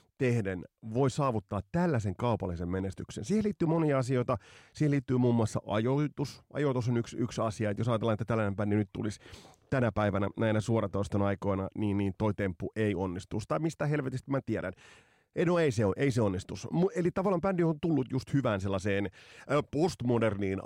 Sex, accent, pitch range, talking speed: male, native, 100-140 Hz, 165 wpm